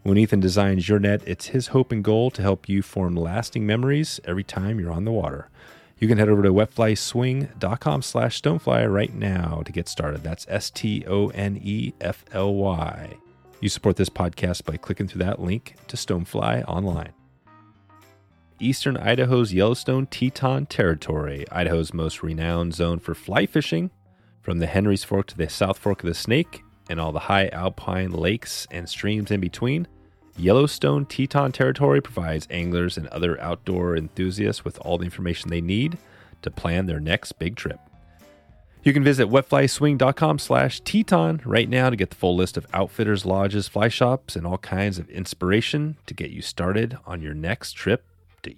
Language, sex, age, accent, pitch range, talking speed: English, male, 30-49, American, 85-115 Hz, 165 wpm